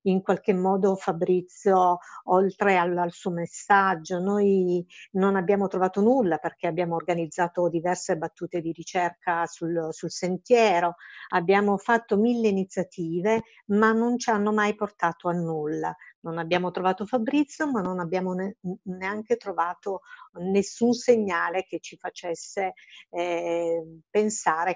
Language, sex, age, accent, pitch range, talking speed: Italian, female, 50-69, native, 170-210 Hz, 125 wpm